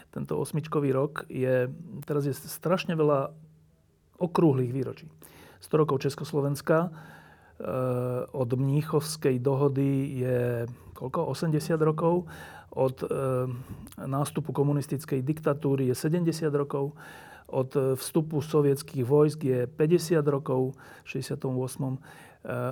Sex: male